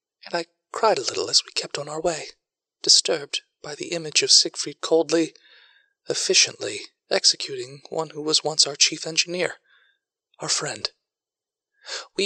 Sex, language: male, English